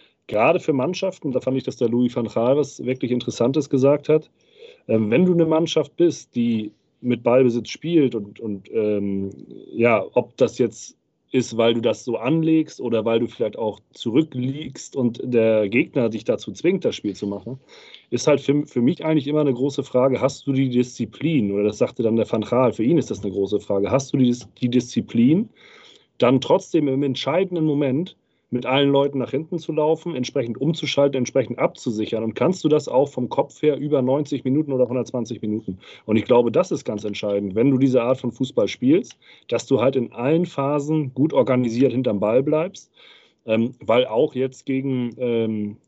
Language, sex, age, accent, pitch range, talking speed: German, male, 40-59, German, 115-145 Hz, 195 wpm